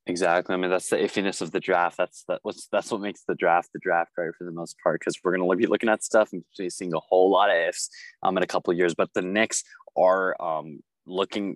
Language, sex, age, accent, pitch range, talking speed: English, male, 20-39, American, 90-105 Hz, 260 wpm